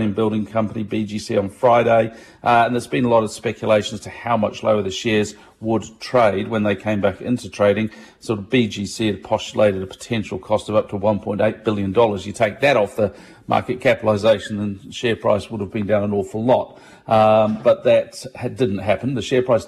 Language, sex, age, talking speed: English, male, 40-59, 200 wpm